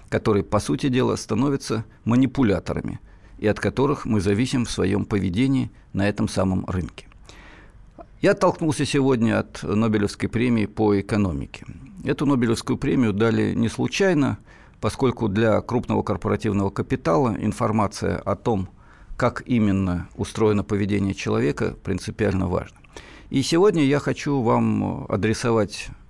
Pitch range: 100-125 Hz